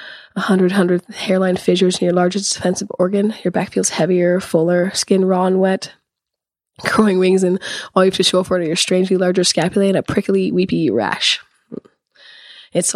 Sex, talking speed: female, 180 wpm